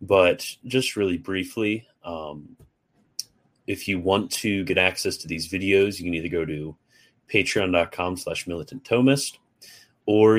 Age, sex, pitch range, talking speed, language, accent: 30-49, male, 85-105 Hz, 140 wpm, English, American